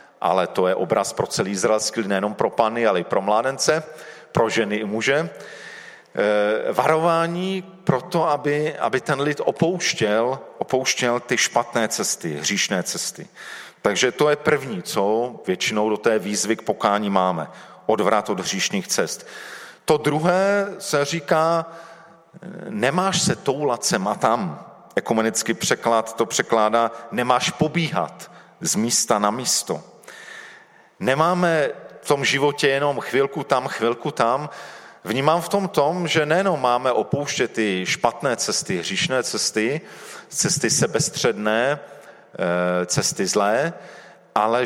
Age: 40-59